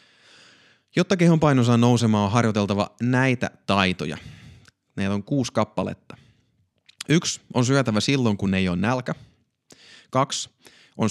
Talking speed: 125 wpm